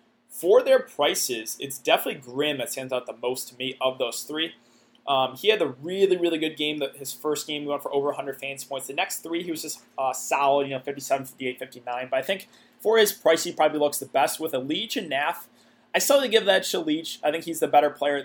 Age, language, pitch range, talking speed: 20-39, English, 130-165 Hz, 255 wpm